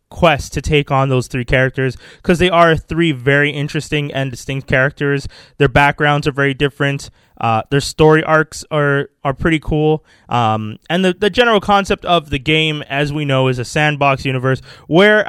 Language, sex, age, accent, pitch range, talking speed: English, male, 20-39, American, 140-190 Hz, 180 wpm